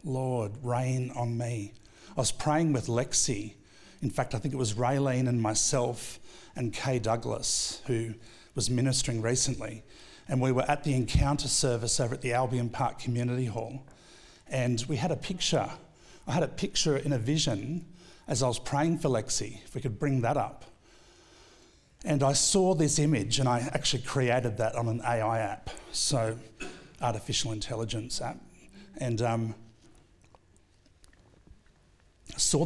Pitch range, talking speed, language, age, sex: 110-135 Hz, 155 wpm, English, 50-69, male